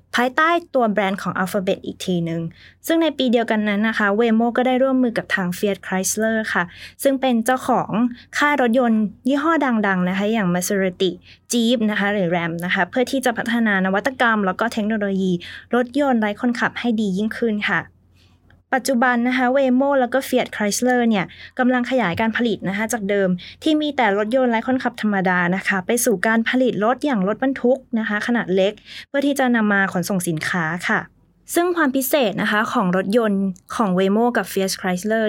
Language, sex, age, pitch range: Thai, female, 20-39, 190-245 Hz